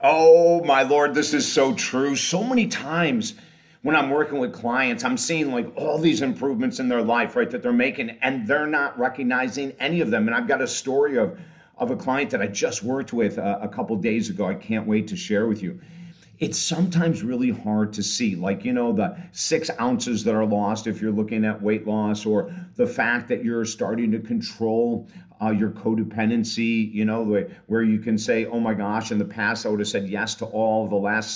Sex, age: male, 50-69